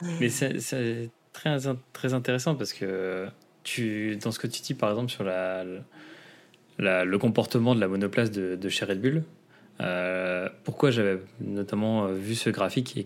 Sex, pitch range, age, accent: male, 100-130 Hz, 20-39, French